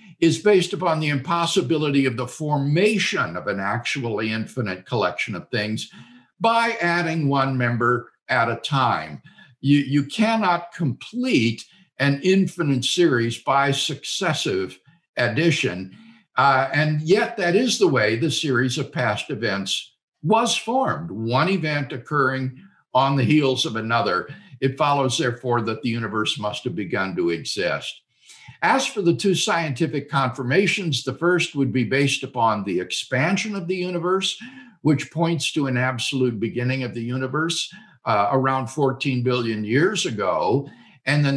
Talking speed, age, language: 145 wpm, 60-79, English